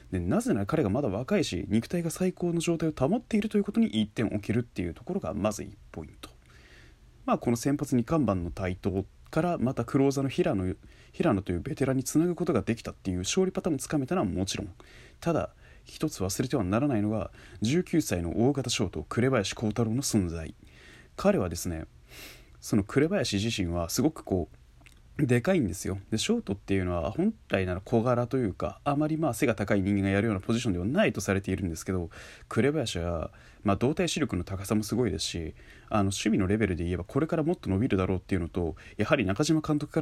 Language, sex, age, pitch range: Japanese, male, 20-39, 95-140 Hz